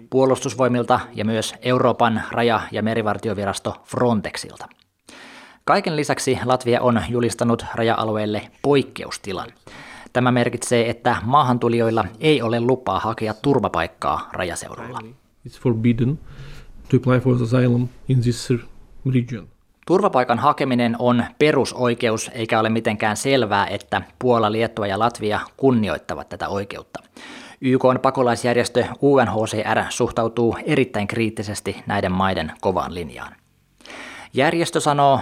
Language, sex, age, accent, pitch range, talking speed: Finnish, male, 20-39, native, 110-130 Hz, 90 wpm